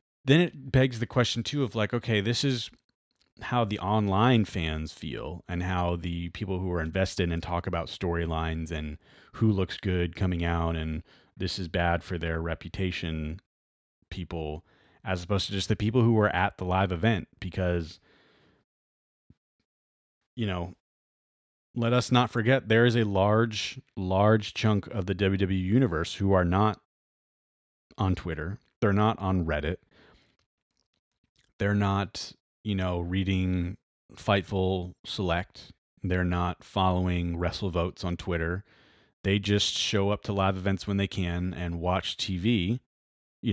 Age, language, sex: 30-49, English, male